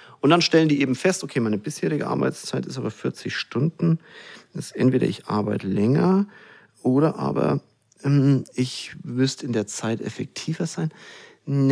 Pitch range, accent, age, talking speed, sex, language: 120-180 Hz, German, 40-59, 160 wpm, male, German